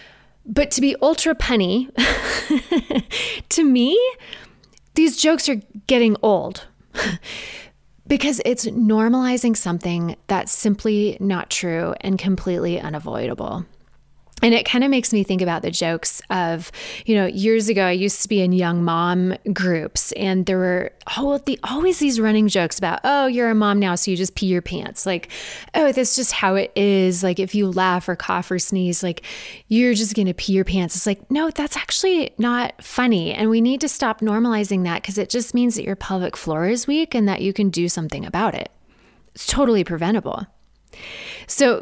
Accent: American